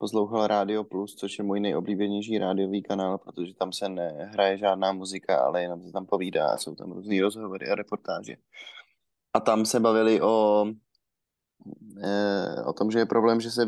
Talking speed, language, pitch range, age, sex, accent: 175 wpm, Czech, 95-105 Hz, 20-39, male, native